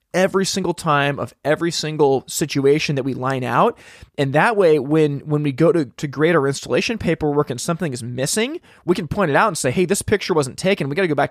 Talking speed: 240 wpm